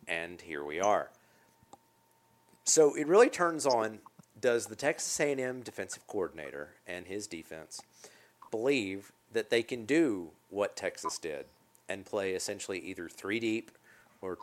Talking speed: 135 wpm